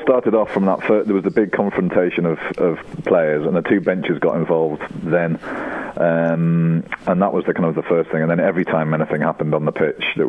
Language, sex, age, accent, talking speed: English, male, 40-59, British, 240 wpm